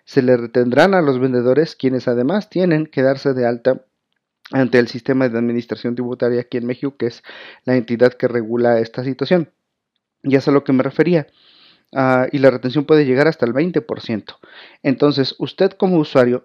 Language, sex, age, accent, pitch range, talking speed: Spanish, male, 40-59, Mexican, 125-140 Hz, 180 wpm